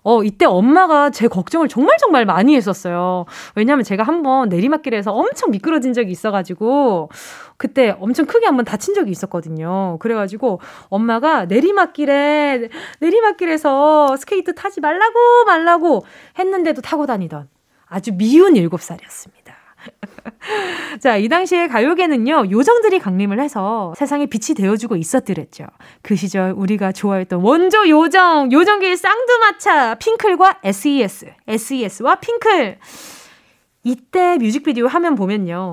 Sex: female